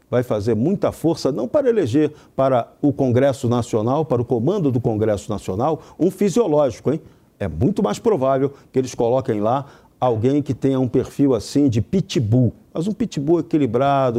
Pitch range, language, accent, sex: 125-165 Hz, Portuguese, Brazilian, male